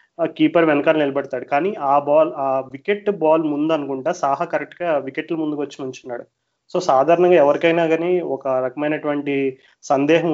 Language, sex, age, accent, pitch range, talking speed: Telugu, male, 30-49, native, 135-165 Hz, 140 wpm